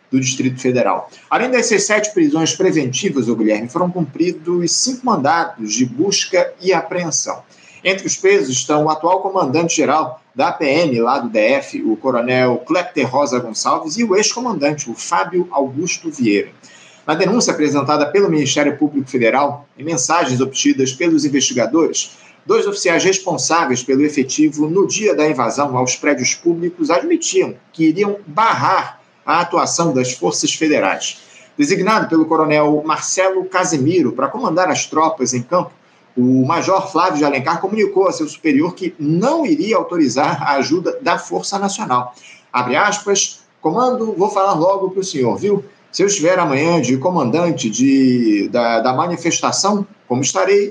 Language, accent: Portuguese, Brazilian